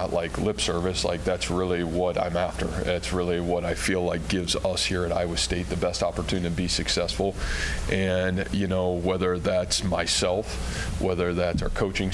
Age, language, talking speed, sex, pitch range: 20-39, English, 185 wpm, male, 85-95 Hz